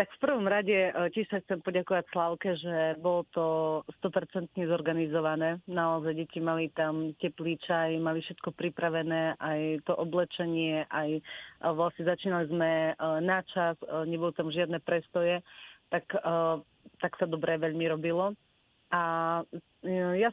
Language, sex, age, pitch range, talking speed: Slovak, female, 30-49, 160-180 Hz, 125 wpm